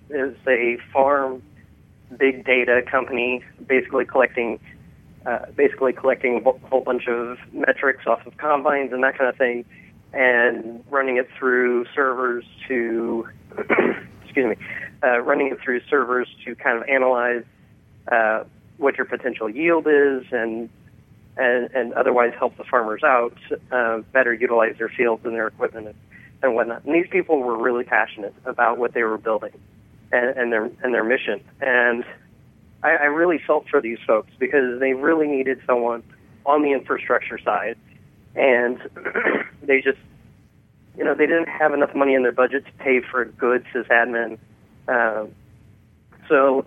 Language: English